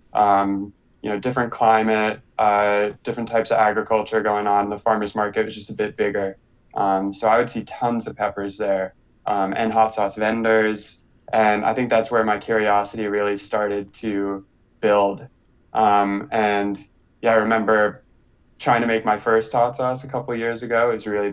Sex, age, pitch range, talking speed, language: male, 20-39, 100-115 Hz, 185 wpm, English